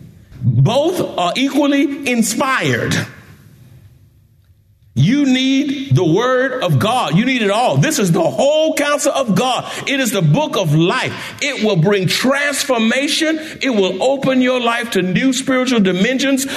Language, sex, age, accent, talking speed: English, male, 60-79, American, 145 wpm